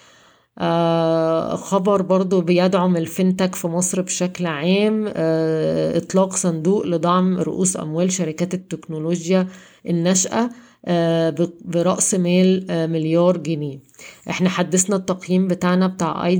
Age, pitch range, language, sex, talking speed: 20-39, 165-185 Hz, Arabic, female, 110 wpm